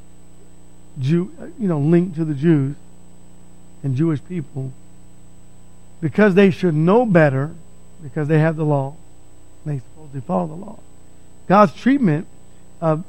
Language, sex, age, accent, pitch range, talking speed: English, male, 50-69, American, 155-200 Hz, 135 wpm